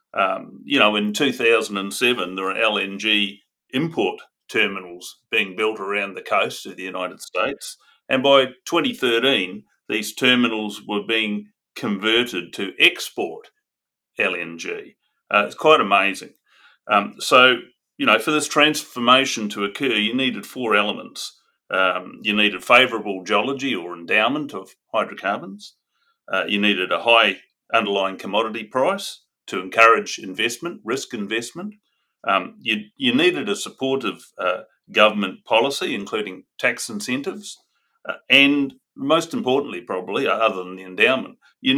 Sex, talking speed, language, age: male, 130 wpm, English, 40-59